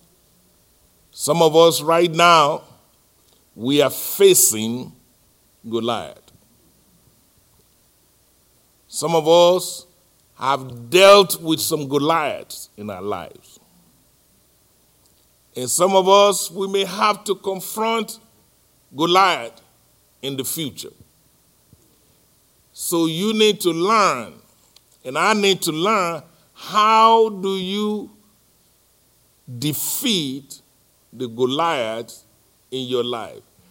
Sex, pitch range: male, 130-190 Hz